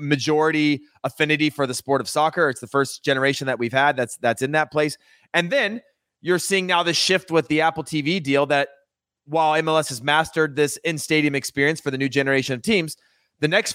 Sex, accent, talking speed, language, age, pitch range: male, American, 205 wpm, English, 30-49, 135-160 Hz